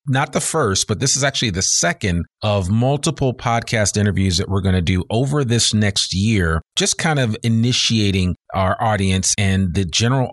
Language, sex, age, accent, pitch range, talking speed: English, male, 40-59, American, 95-120 Hz, 180 wpm